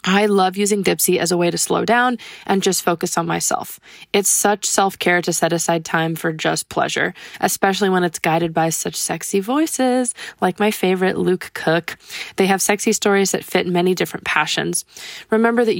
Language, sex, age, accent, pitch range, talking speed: English, female, 20-39, American, 180-230 Hz, 185 wpm